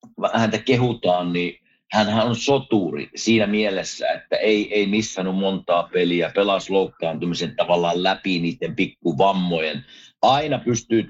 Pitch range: 100-140 Hz